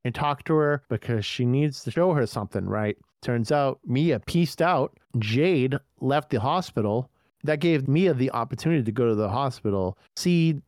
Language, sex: English, male